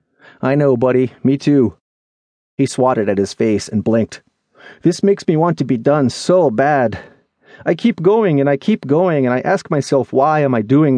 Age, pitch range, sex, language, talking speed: 30-49, 125-200 Hz, male, English, 195 wpm